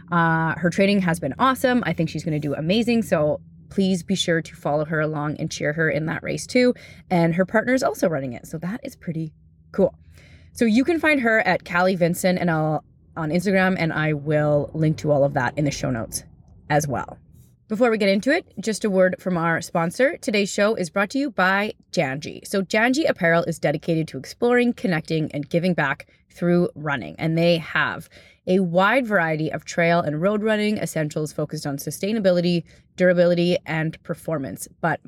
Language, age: English, 20-39